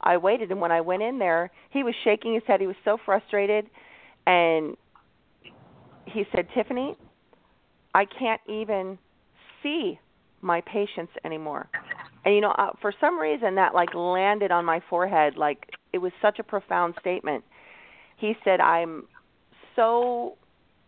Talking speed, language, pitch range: 145 wpm, English, 175-225 Hz